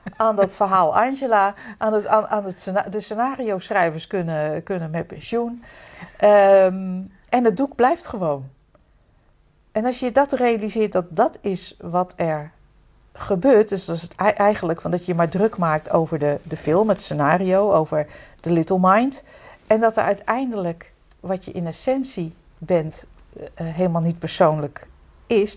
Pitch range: 165-215 Hz